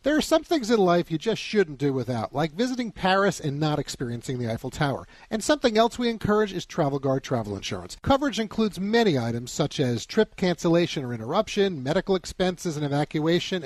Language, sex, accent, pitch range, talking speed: English, male, American, 140-215 Hz, 195 wpm